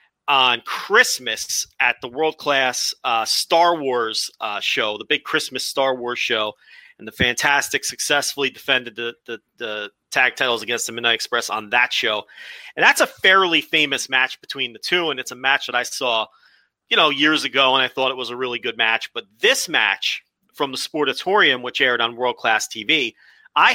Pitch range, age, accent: 130-170 Hz, 40-59, American